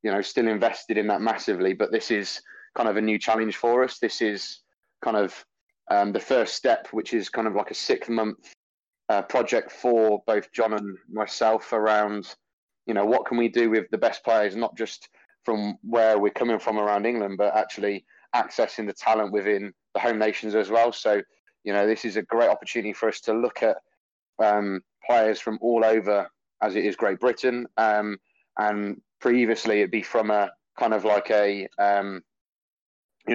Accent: British